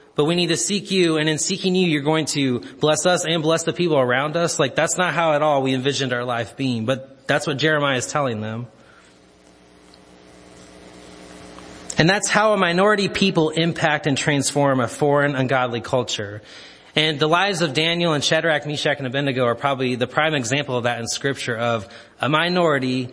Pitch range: 115-165 Hz